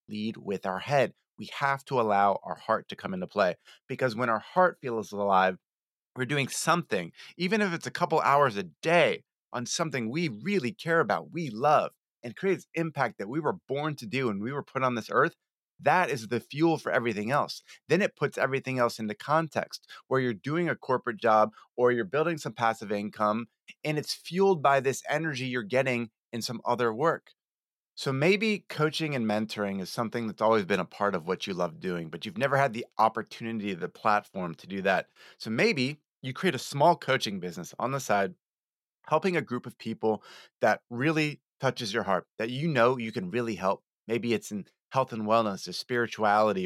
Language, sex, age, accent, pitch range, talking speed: English, male, 30-49, American, 110-150 Hz, 205 wpm